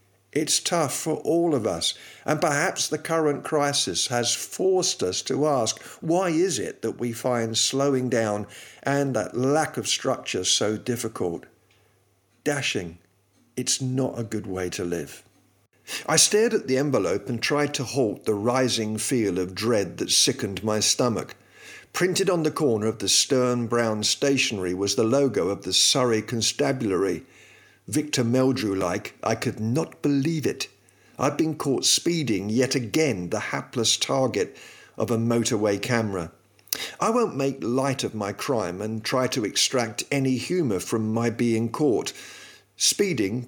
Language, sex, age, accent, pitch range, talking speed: English, male, 50-69, British, 110-140 Hz, 155 wpm